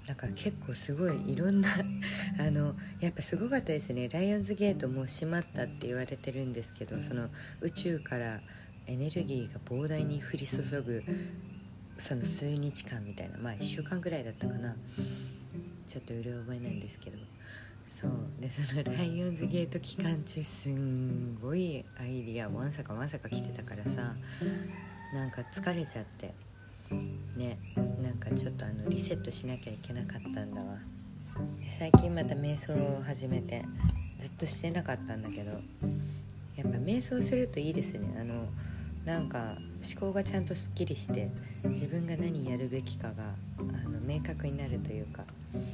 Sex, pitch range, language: female, 105-155 Hz, Japanese